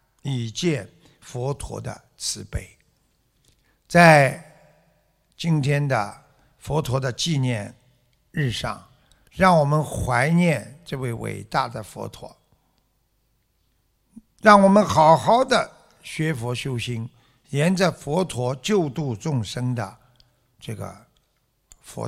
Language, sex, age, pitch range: Chinese, male, 60-79, 115-150 Hz